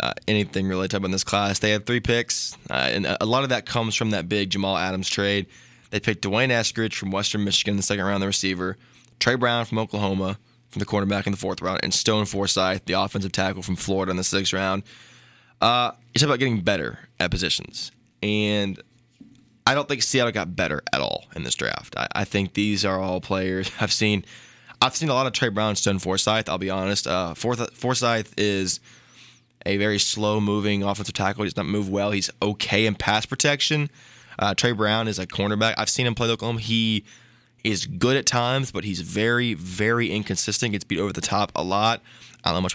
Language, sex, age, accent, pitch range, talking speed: English, male, 20-39, American, 100-120 Hz, 215 wpm